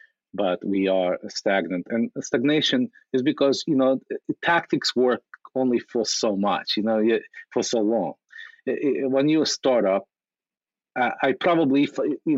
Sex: male